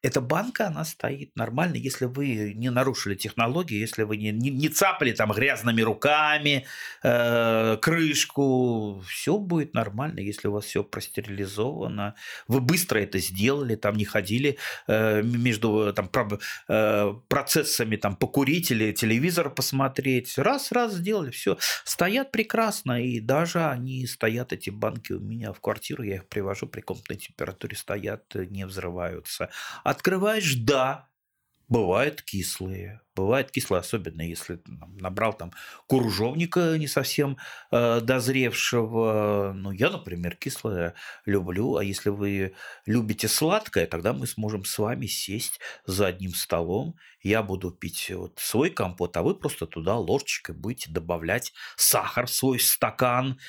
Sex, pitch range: male, 105-140 Hz